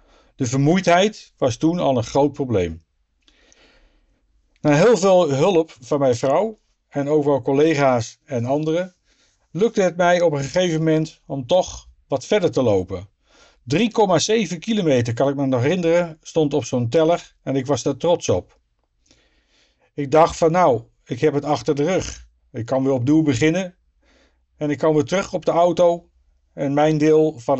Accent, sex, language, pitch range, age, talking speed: Dutch, male, Dutch, 130-170 Hz, 50-69, 170 wpm